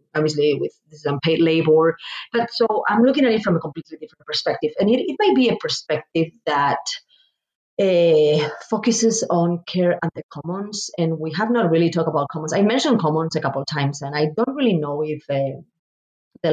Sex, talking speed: female, 195 wpm